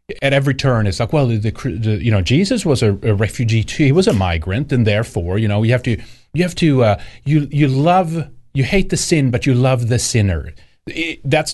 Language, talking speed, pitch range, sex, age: English, 230 wpm, 105-140 Hz, male, 30-49